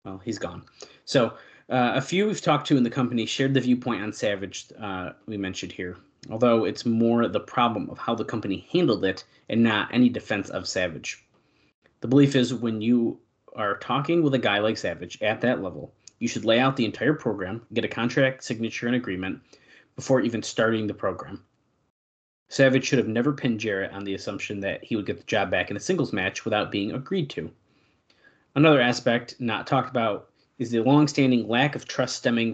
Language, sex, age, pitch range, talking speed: English, male, 30-49, 100-125 Hz, 200 wpm